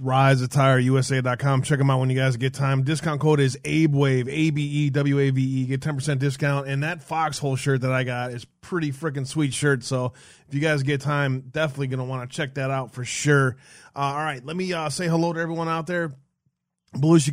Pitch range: 135-155 Hz